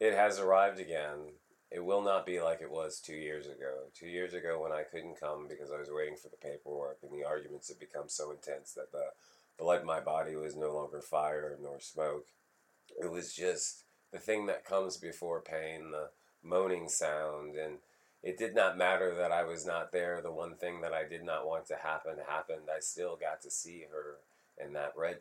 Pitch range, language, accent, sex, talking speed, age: 75-95 Hz, English, American, male, 210 wpm, 30-49